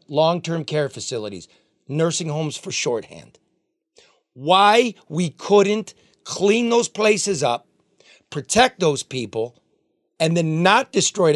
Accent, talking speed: American, 110 wpm